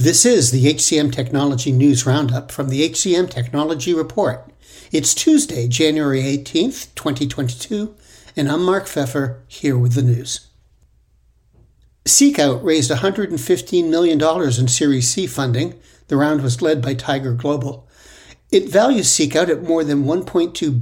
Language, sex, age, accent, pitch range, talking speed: English, male, 60-79, American, 135-165 Hz, 135 wpm